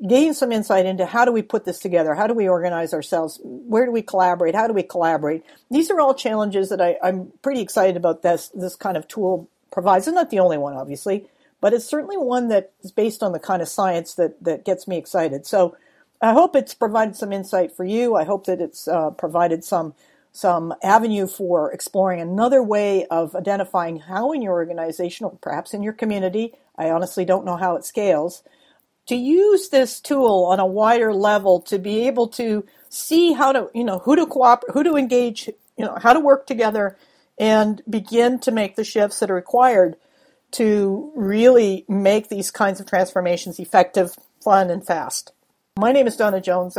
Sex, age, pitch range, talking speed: female, 50-69, 180-240 Hz, 200 wpm